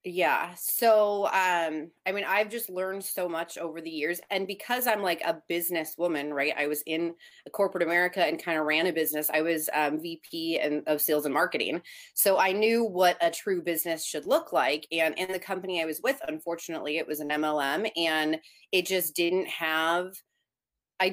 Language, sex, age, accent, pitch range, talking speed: English, female, 20-39, American, 160-190 Hz, 195 wpm